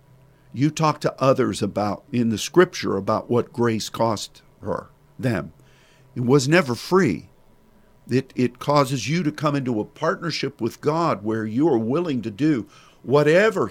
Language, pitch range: English, 110-145 Hz